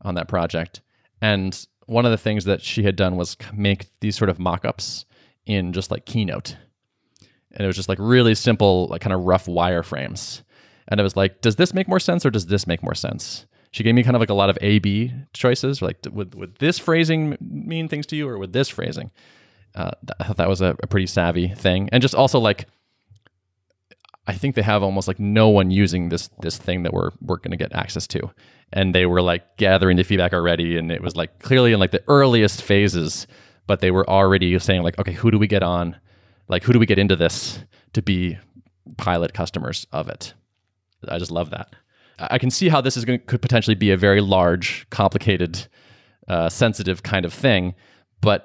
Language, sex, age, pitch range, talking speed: English, male, 20-39, 90-120 Hz, 215 wpm